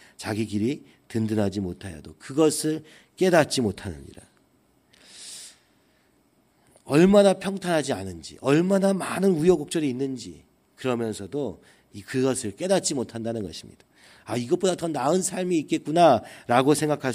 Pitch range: 100-145 Hz